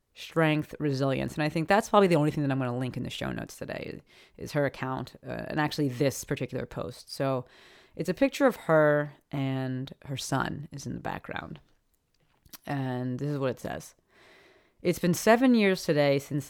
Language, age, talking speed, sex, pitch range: English, 30-49, 195 wpm, female, 135-170 Hz